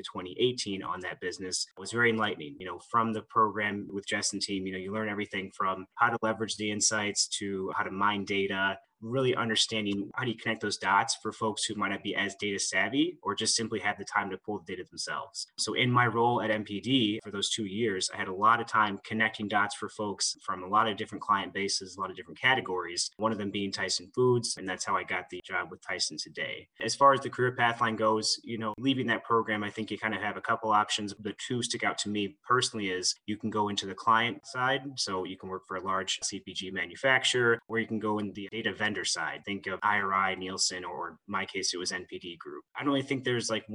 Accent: American